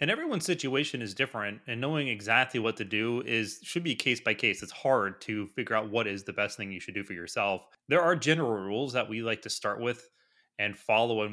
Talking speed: 240 wpm